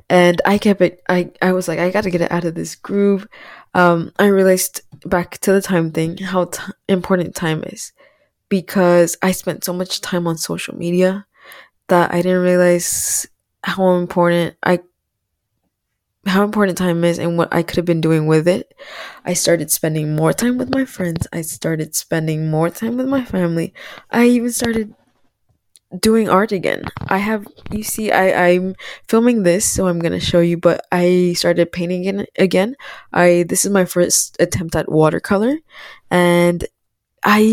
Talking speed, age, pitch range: 175 wpm, 20-39, 170-200 Hz